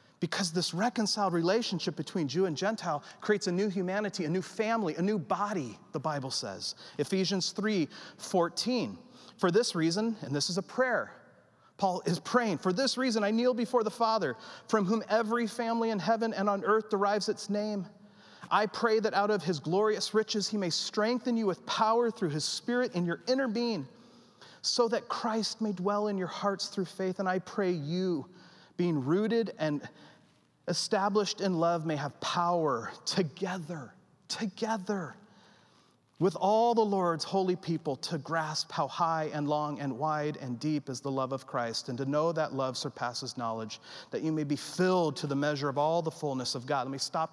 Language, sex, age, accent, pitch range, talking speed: English, male, 40-59, American, 155-210 Hz, 185 wpm